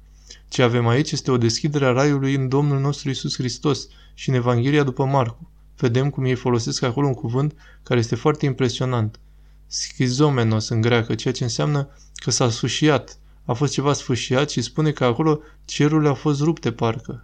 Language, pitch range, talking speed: Romanian, 120-145 Hz, 180 wpm